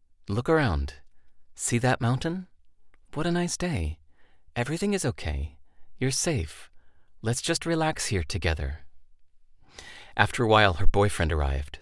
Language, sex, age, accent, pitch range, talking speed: English, male, 40-59, American, 75-125 Hz, 125 wpm